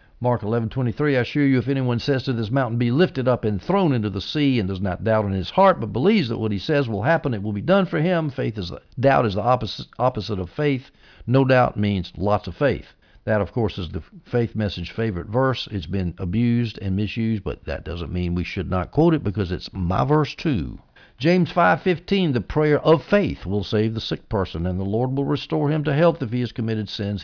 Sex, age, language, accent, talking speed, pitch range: male, 60-79, English, American, 245 wpm, 95-140 Hz